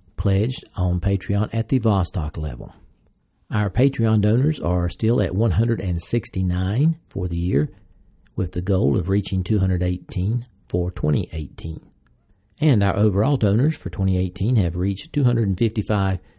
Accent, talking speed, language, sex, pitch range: American, 125 wpm, English, male, 90-115 Hz